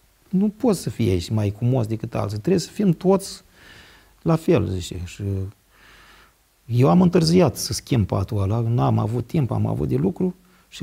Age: 40-59